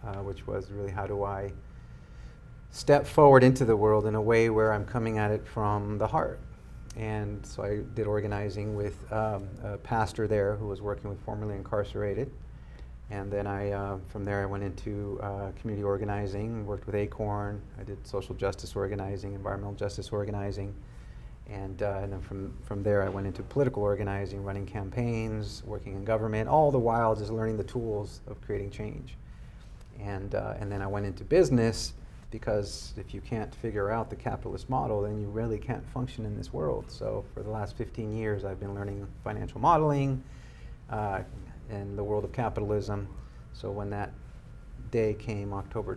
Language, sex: English, male